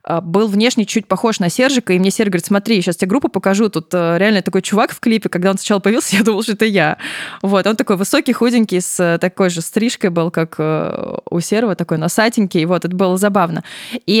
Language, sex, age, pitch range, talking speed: Russian, female, 20-39, 175-225 Hz, 215 wpm